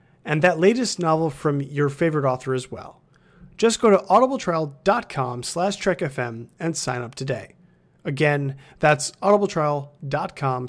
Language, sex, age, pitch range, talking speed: English, male, 30-49, 135-180 Hz, 130 wpm